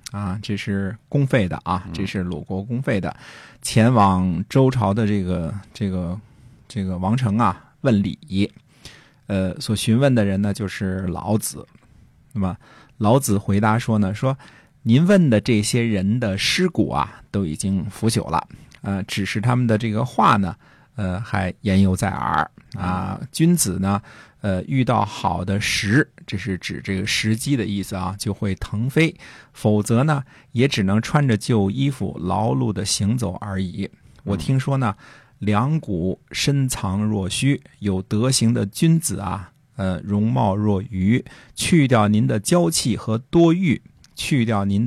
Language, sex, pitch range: Chinese, male, 100-130 Hz